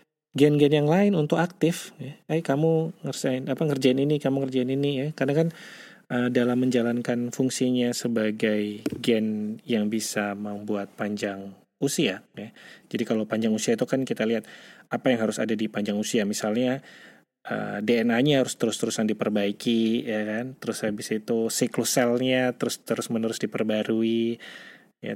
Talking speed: 150 wpm